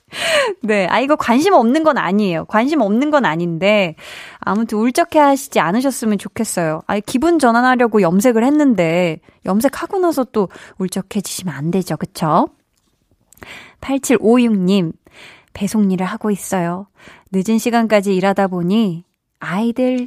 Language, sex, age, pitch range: Korean, female, 20-39, 175-230 Hz